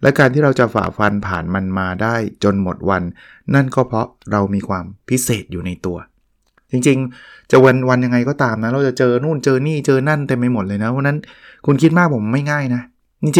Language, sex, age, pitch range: Thai, male, 20-39, 105-135 Hz